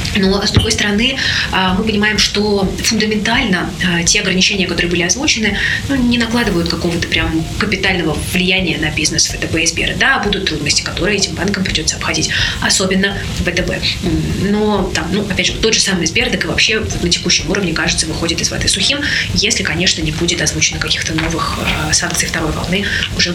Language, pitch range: Russian, 170-195 Hz